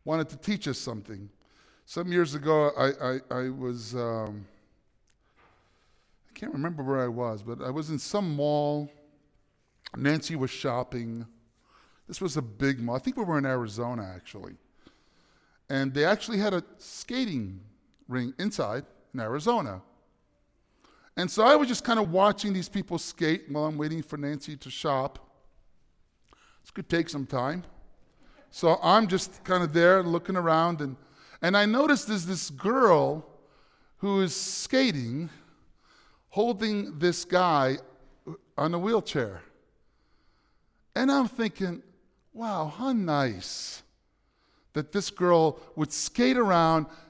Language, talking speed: English, 140 wpm